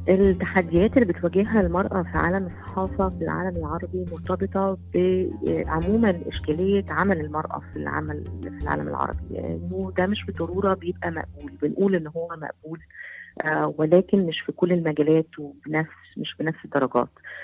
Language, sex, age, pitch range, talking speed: Arabic, female, 30-49, 150-180 Hz, 140 wpm